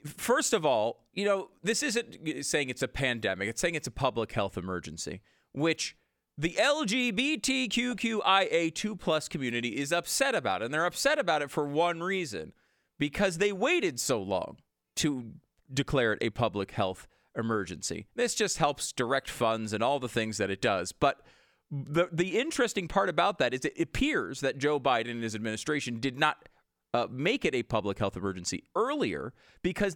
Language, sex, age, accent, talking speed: English, male, 40-59, American, 175 wpm